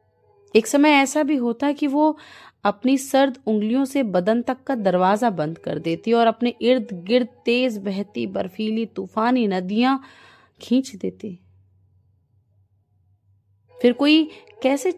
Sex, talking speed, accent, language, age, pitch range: female, 130 wpm, native, Hindi, 30-49, 165-255 Hz